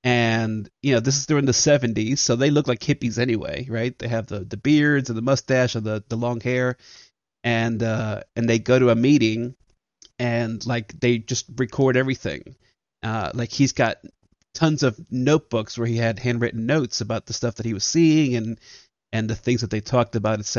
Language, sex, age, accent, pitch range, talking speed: English, male, 30-49, American, 110-125 Hz, 205 wpm